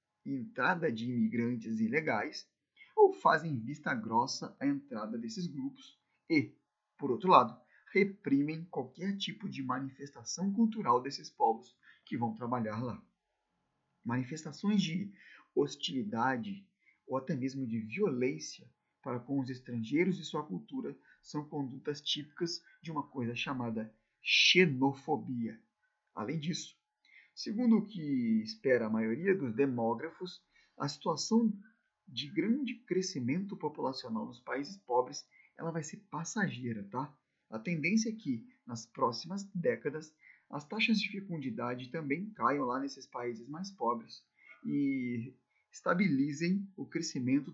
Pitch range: 125-205 Hz